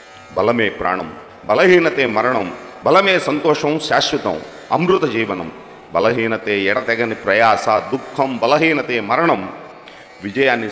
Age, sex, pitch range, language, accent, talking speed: 40-59, male, 105-150 Hz, Telugu, native, 90 wpm